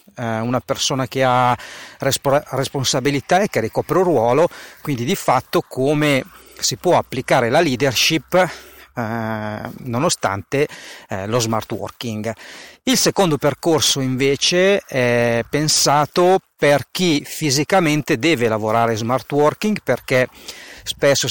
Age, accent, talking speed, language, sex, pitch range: 40-59, native, 105 wpm, Italian, male, 120-160 Hz